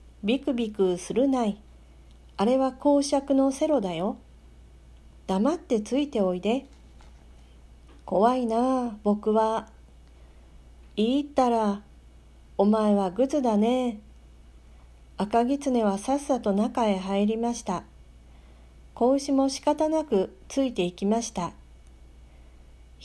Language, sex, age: Japanese, female, 40-59